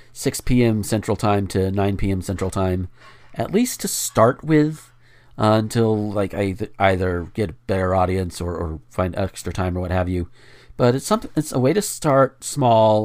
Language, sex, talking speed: English, male, 190 wpm